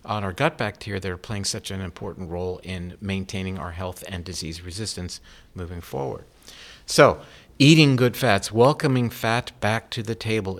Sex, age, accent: male, 50-69, American